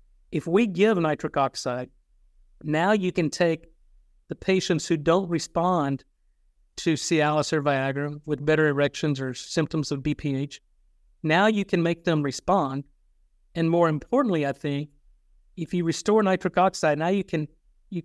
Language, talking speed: English, 150 wpm